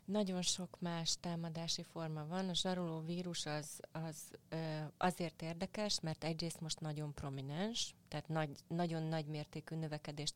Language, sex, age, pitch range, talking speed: Hungarian, female, 30-49, 150-170 Hz, 145 wpm